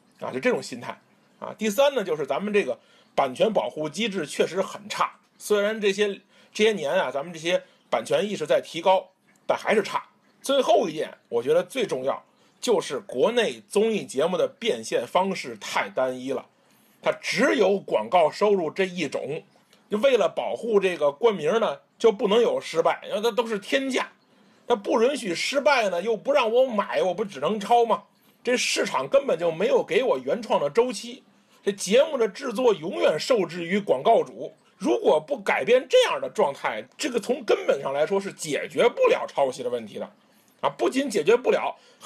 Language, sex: Chinese, male